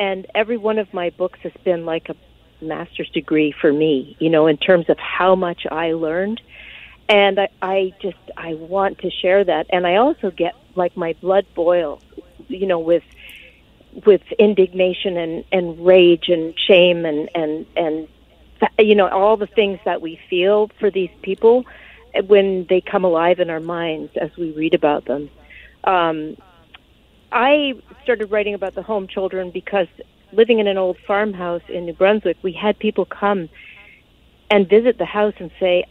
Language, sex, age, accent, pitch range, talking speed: English, female, 50-69, American, 165-200 Hz, 170 wpm